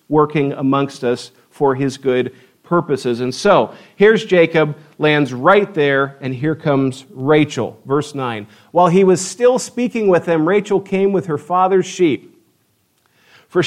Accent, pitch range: American, 120-175 Hz